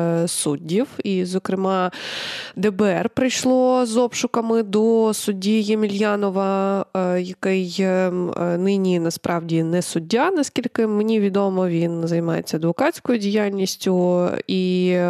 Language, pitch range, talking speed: Ukrainian, 180-215 Hz, 90 wpm